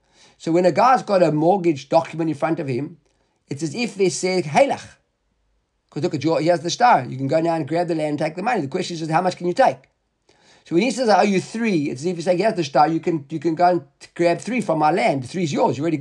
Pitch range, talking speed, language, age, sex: 155-195 Hz, 290 wpm, English, 50-69, male